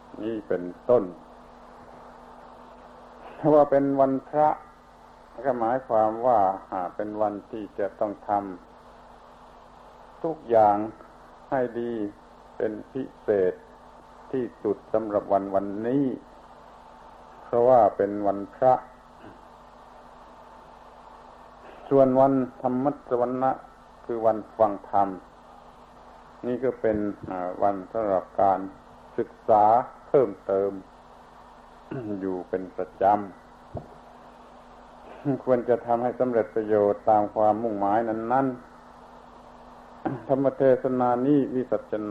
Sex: male